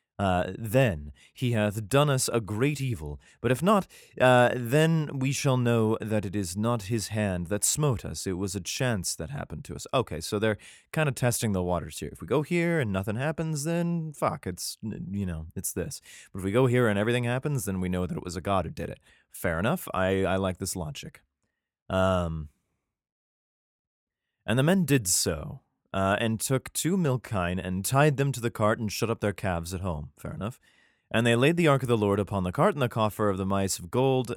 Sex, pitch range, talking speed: male, 95-135 Hz, 225 wpm